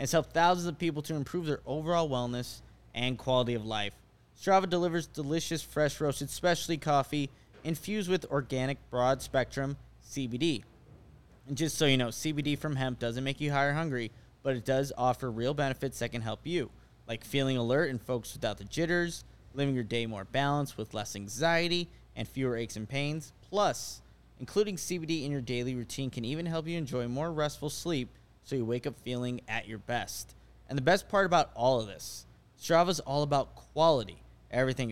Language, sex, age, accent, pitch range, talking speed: English, male, 20-39, American, 120-160 Hz, 185 wpm